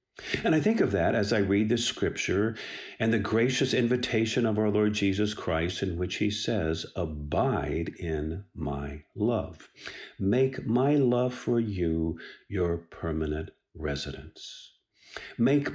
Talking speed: 135 wpm